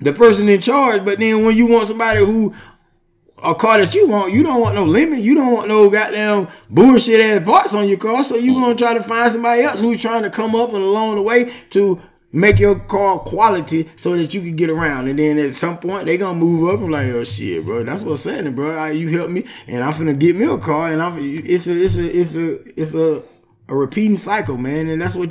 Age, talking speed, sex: 20-39, 260 wpm, male